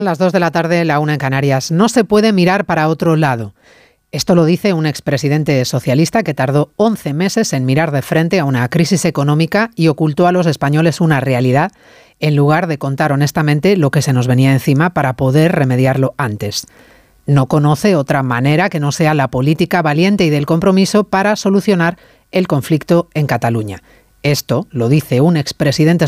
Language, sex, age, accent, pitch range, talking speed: Spanish, female, 40-59, Spanish, 135-180 Hz, 185 wpm